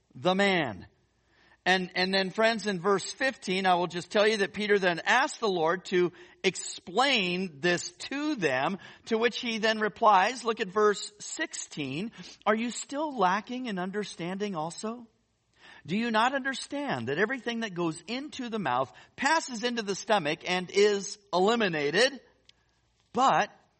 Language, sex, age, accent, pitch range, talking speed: English, male, 50-69, American, 155-230 Hz, 150 wpm